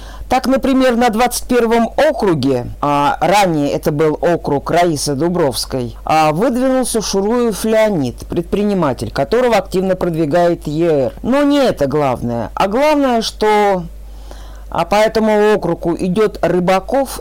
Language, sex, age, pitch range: Russian, female, 50-69, 150-220 Hz